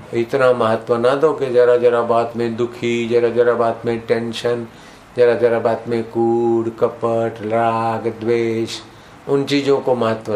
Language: Hindi